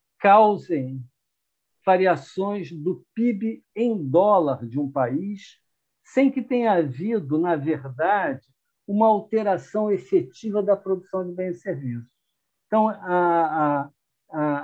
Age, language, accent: 60-79, Portuguese, Brazilian